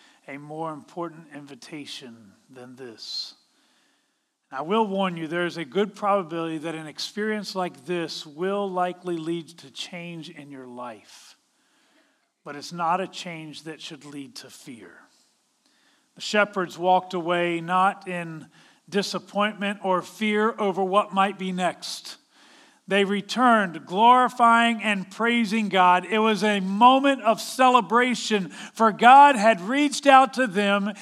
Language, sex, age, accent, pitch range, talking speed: English, male, 40-59, American, 160-225 Hz, 135 wpm